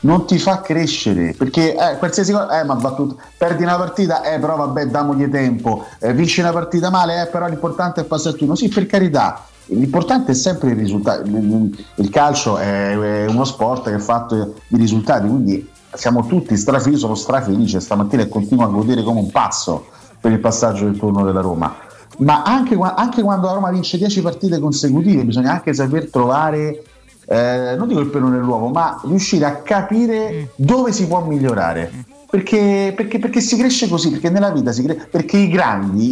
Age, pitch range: 30-49, 115-180 Hz